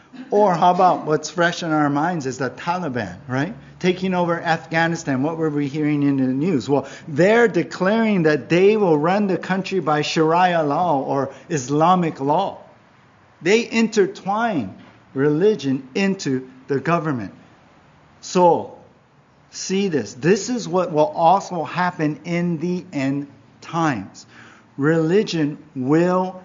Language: English